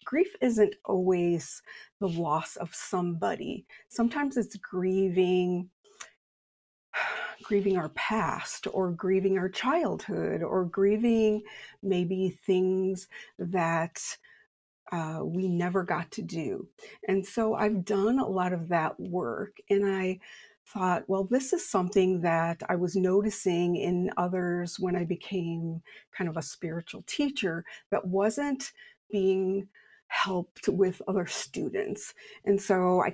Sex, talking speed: female, 125 wpm